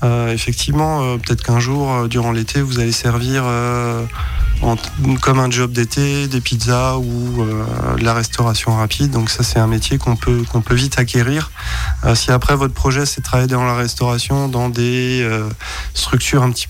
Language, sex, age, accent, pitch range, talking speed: French, male, 20-39, French, 110-125 Hz, 200 wpm